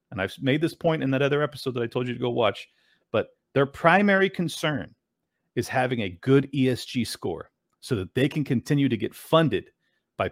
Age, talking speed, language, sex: 40-59, 205 wpm, English, male